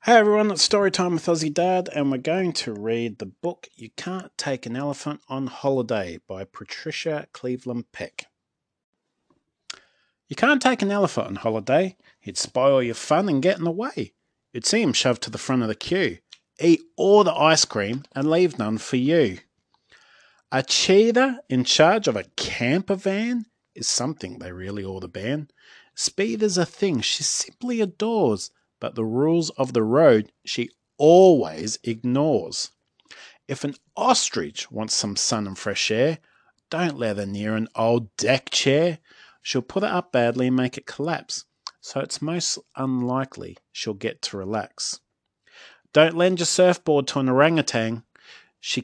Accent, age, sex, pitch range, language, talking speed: Australian, 30-49, male, 120-180 Hz, English, 165 wpm